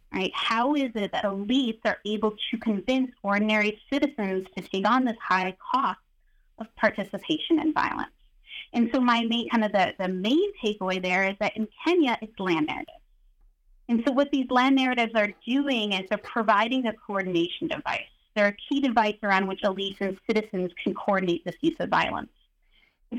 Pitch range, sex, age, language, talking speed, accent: 190-255 Hz, female, 30-49, English, 180 wpm, American